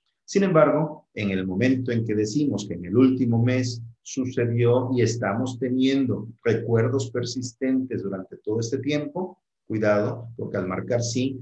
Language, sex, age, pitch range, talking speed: Spanish, male, 50-69, 105-140 Hz, 145 wpm